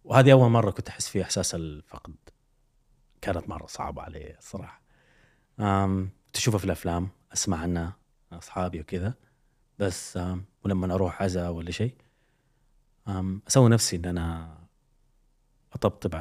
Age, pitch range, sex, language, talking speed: 30-49, 90-130 Hz, male, Arabic, 120 wpm